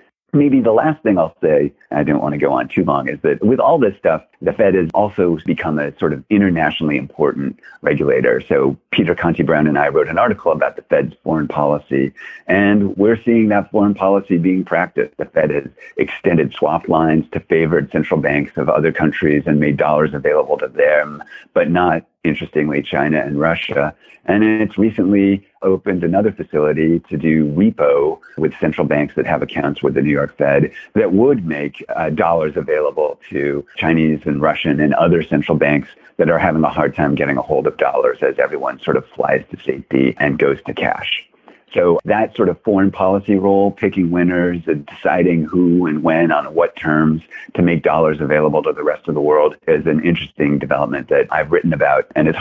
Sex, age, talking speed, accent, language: male, 50-69, 195 wpm, American, English